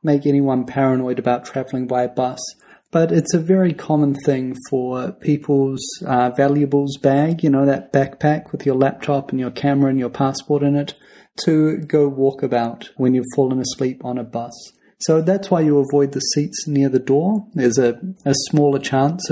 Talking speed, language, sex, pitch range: 185 wpm, English, male, 130-145 Hz